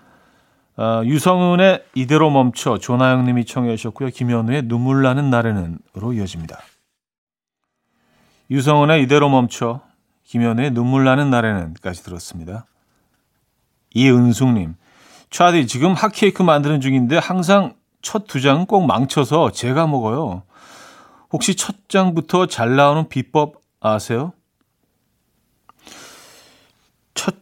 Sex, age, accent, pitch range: male, 40-59, native, 120-170 Hz